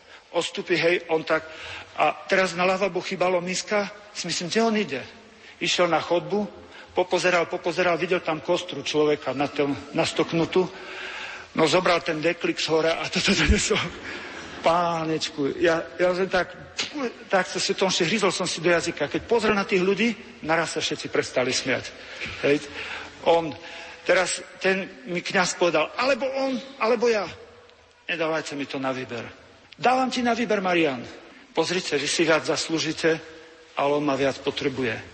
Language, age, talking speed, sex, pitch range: Slovak, 50-69, 155 wpm, male, 145-180 Hz